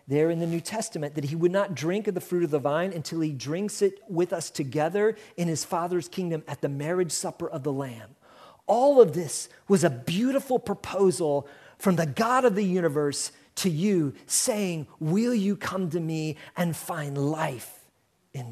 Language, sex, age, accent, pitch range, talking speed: English, male, 40-59, American, 140-185 Hz, 190 wpm